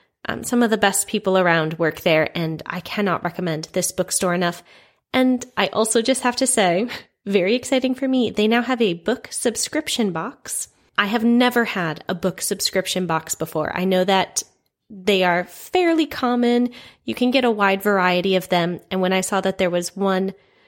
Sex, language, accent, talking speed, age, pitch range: female, English, American, 190 wpm, 20-39, 185-250 Hz